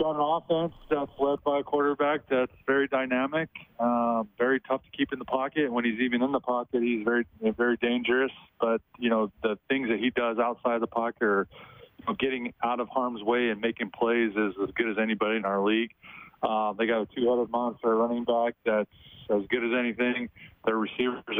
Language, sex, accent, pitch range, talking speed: English, male, American, 110-125 Hz, 215 wpm